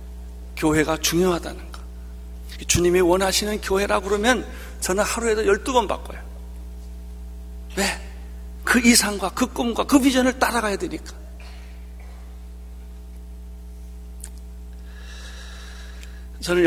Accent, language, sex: native, Korean, male